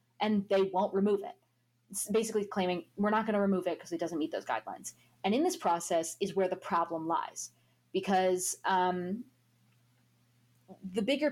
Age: 20-39